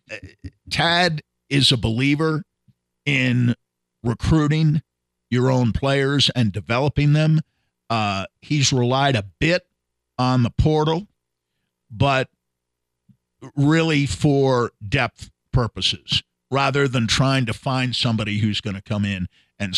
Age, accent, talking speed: 50-69, American, 110 wpm